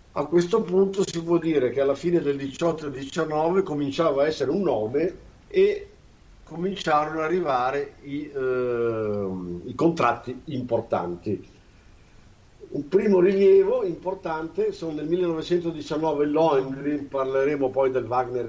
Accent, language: native, Italian